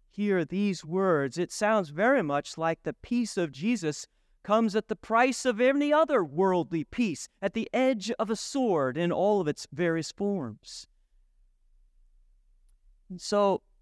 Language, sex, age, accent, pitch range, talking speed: English, male, 40-59, American, 155-220 Hz, 150 wpm